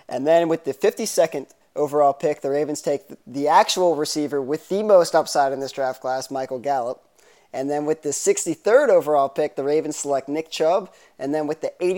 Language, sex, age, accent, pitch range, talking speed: English, male, 20-39, American, 140-175 Hz, 195 wpm